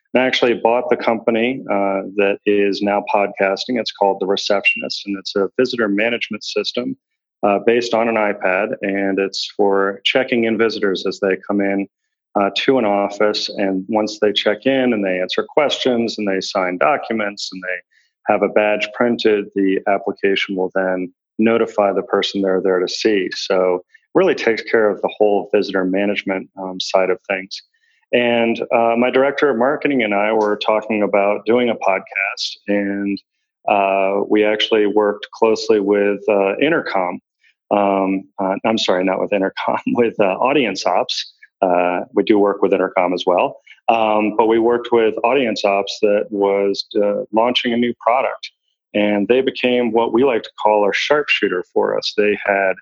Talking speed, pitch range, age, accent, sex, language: 175 wpm, 100-115 Hz, 40-59, American, male, English